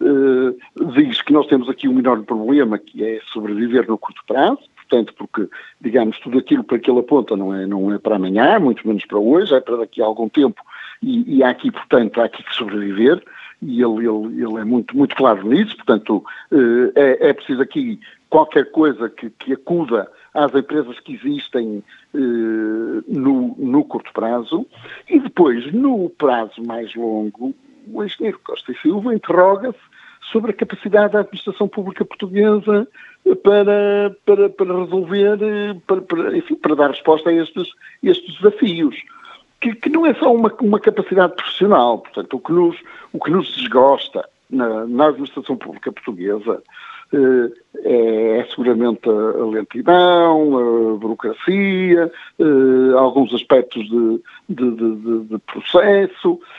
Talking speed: 150 wpm